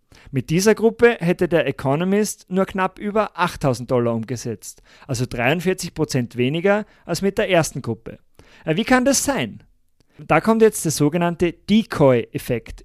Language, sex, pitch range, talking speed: German, male, 135-195 Hz, 145 wpm